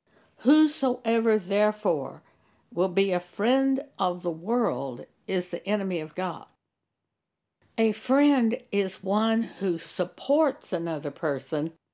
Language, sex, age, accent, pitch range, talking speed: English, female, 60-79, American, 170-215 Hz, 110 wpm